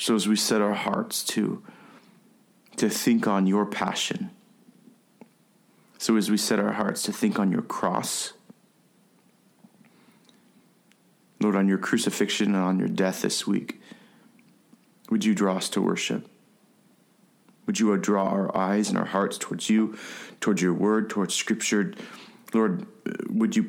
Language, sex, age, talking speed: English, male, 40-59, 145 wpm